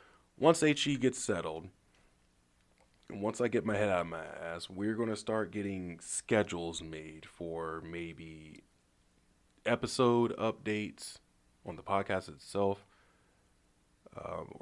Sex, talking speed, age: male, 125 wpm, 20-39